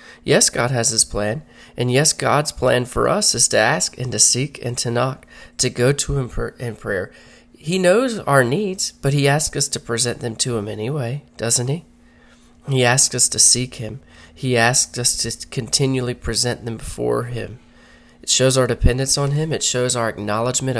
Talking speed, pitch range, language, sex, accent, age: 195 wpm, 110-135 Hz, English, male, American, 30-49